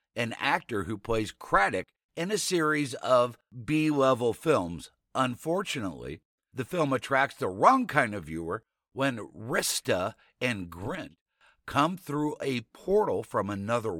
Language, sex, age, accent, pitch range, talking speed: English, male, 50-69, American, 110-155 Hz, 130 wpm